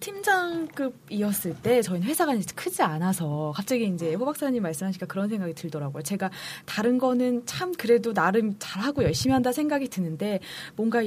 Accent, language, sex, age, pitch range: native, Korean, female, 20-39, 190-285 Hz